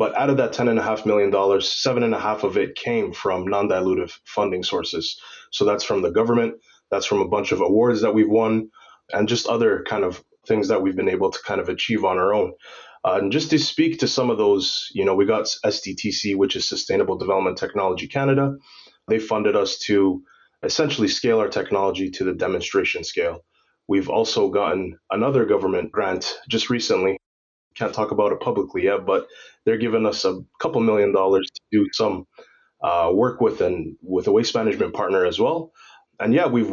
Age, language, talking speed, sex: 20-39, English, 200 wpm, male